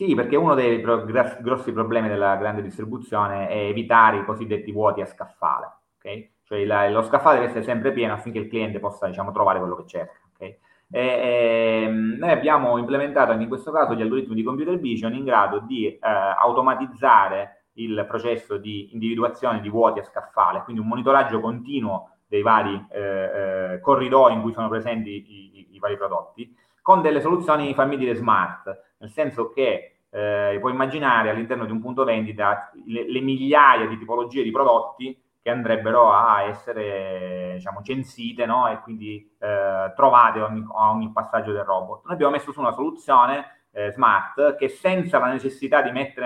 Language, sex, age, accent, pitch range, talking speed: Italian, male, 30-49, native, 105-125 Hz, 170 wpm